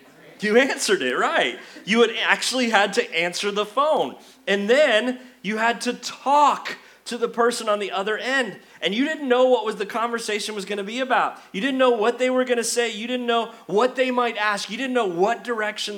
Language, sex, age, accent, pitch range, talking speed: English, male, 30-49, American, 205-260 Hz, 220 wpm